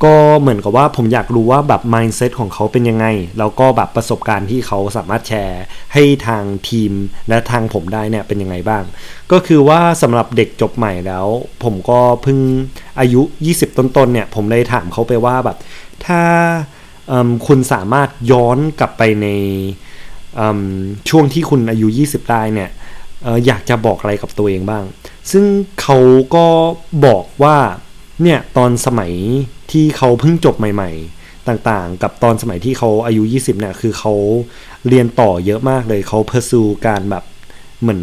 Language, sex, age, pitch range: Thai, male, 20-39, 105-140 Hz